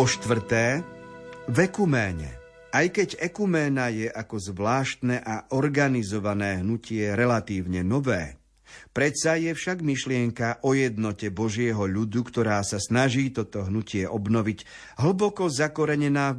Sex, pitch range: male, 105-140 Hz